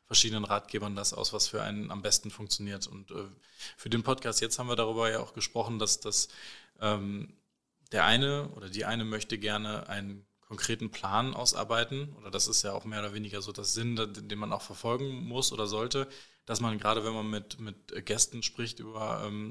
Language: German